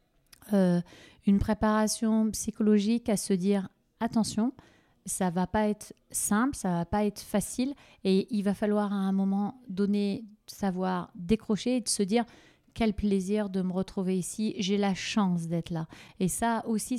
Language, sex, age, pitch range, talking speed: French, female, 30-49, 185-220 Hz, 170 wpm